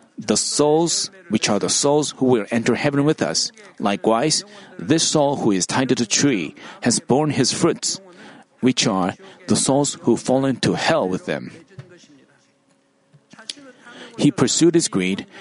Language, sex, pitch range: Korean, male, 115-155 Hz